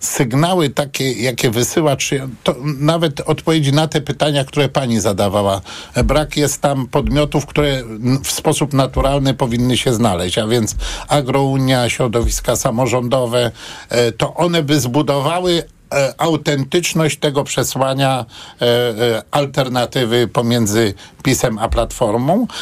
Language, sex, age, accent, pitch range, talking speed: Polish, male, 50-69, native, 120-150 Hz, 115 wpm